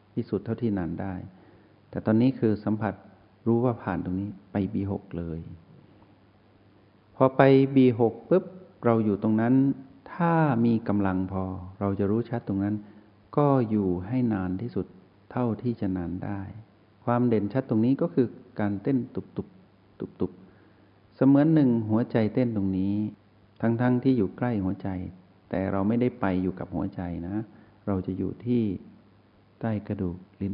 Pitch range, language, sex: 95-115 Hz, Thai, male